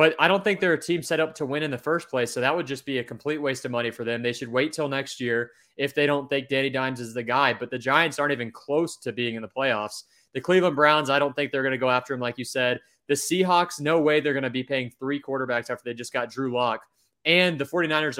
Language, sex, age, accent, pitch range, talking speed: English, male, 20-39, American, 125-150 Hz, 290 wpm